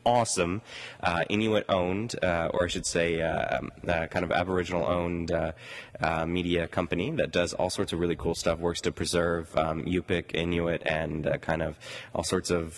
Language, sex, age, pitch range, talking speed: English, male, 20-39, 85-130 Hz, 195 wpm